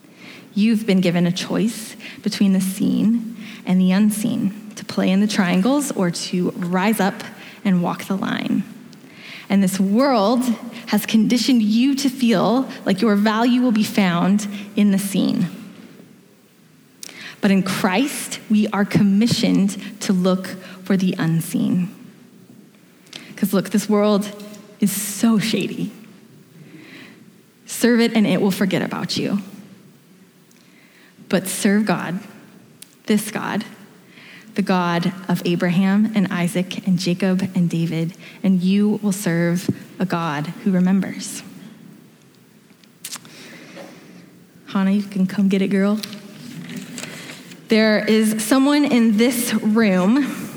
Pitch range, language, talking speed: 195-220 Hz, English, 120 wpm